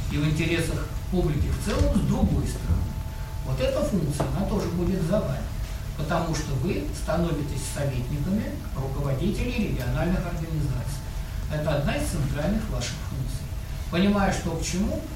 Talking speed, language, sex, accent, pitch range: 140 wpm, Russian, male, native, 135-180 Hz